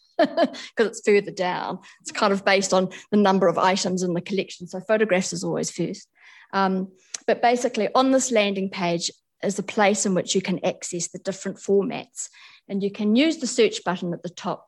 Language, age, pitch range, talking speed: English, 50-69, 185-235 Hz, 200 wpm